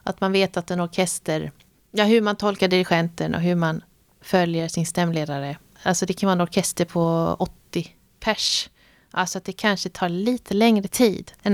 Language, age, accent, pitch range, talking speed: Swedish, 30-49, native, 170-200 Hz, 180 wpm